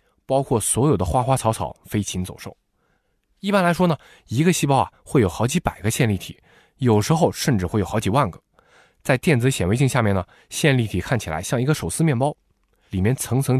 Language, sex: Chinese, male